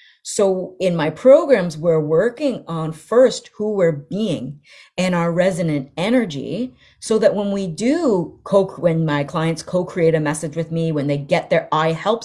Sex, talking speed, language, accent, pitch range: female, 165 wpm, English, American, 155-200 Hz